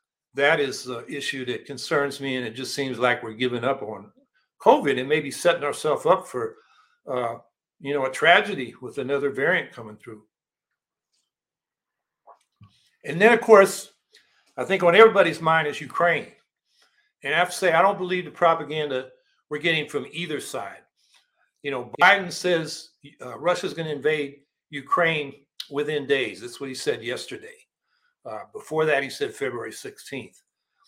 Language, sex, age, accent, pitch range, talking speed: English, male, 60-79, American, 140-220 Hz, 160 wpm